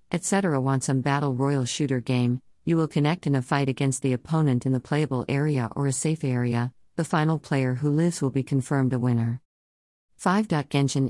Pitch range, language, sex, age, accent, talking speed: 130-155 Hz, English, female, 50-69, American, 195 wpm